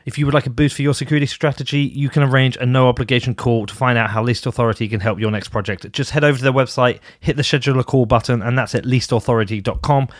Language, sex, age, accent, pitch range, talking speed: English, male, 30-49, British, 105-130 Hz, 255 wpm